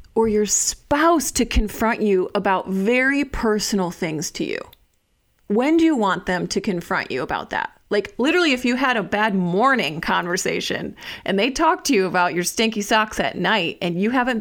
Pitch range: 190-245 Hz